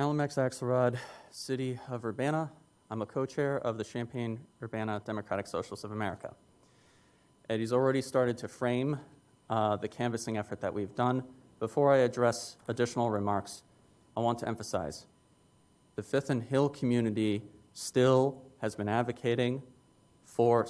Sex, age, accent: male, 30-49, American